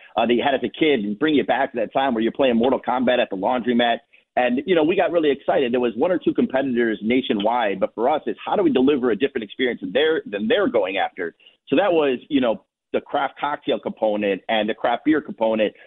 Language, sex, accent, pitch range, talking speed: English, male, American, 115-150 Hz, 250 wpm